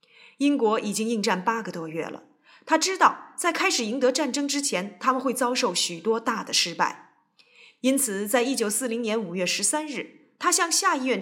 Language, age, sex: Chinese, 20-39, female